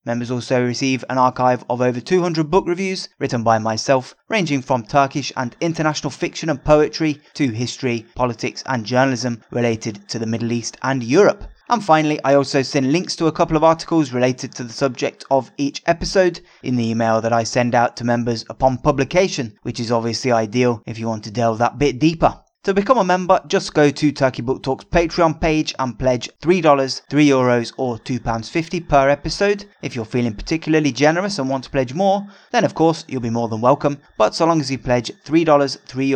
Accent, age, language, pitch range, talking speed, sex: British, 20-39, English, 120-155 Hz, 200 wpm, male